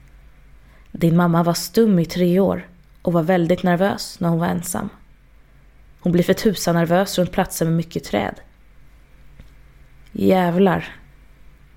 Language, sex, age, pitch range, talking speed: Swedish, female, 20-39, 170-200 Hz, 125 wpm